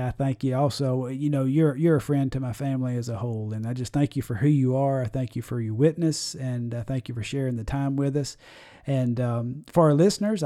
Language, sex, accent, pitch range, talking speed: English, male, American, 130-155 Hz, 265 wpm